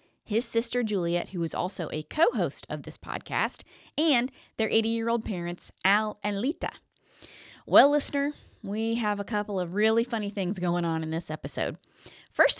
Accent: American